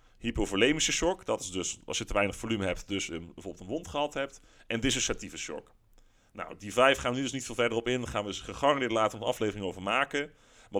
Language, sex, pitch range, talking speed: Dutch, male, 100-125 Hz, 245 wpm